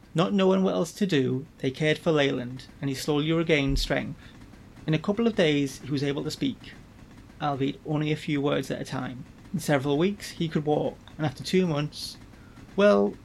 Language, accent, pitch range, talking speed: English, British, 130-165 Hz, 200 wpm